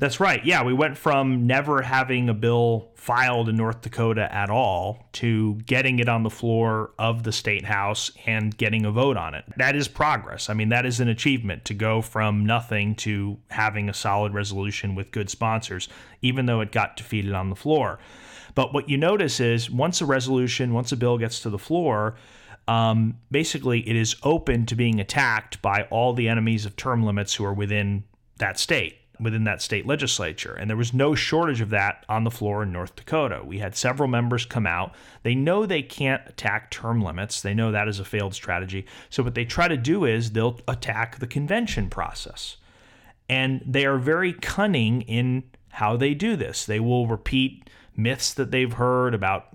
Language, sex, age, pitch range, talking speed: English, male, 30-49, 105-130 Hz, 195 wpm